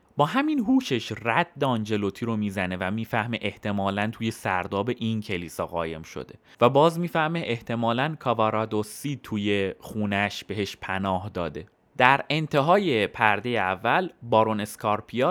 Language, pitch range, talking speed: Persian, 105-165 Hz, 120 wpm